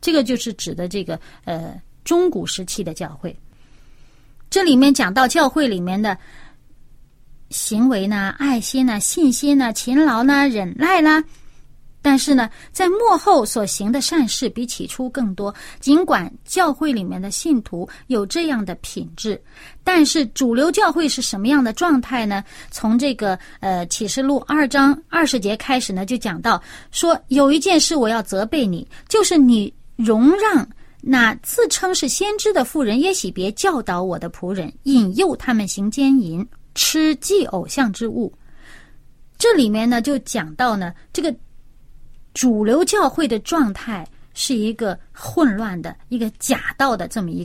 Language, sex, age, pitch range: Chinese, female, 30-49, 205-290 Hz